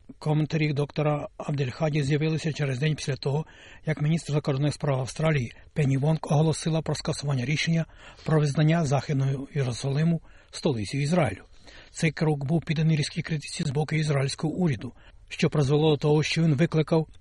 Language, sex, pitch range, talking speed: Ukrainian, male, 140-160 Hz, 145 wpm